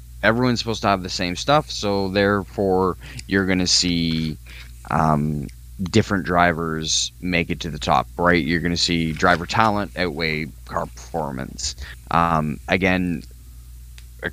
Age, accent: 20-39, American